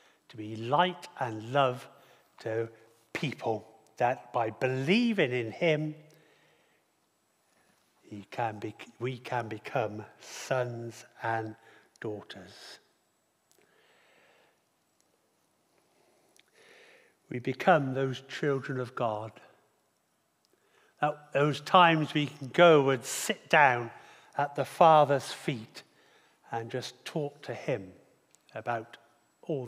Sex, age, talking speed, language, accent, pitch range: male, 60-79, 95 wpm, English, British, 115-145 Hz